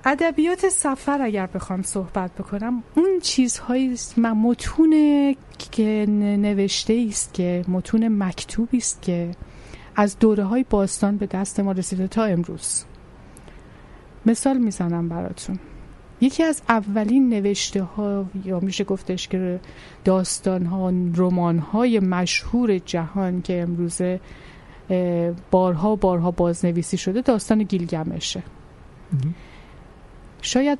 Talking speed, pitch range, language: 100 wpm, 180-225 Hz, Persian